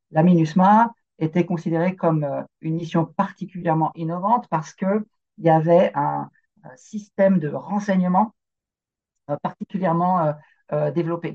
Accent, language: French, French